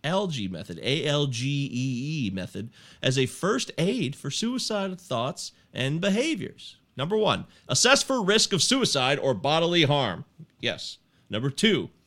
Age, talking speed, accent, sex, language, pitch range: 40-59, 130 wpm, American, male, English, 120-195 Hz